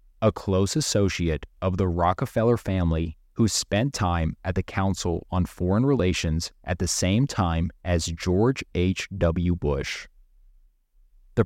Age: 20-39